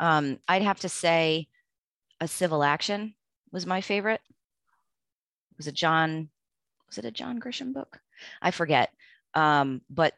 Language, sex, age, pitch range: English, female, 30-49, 135-160 Hz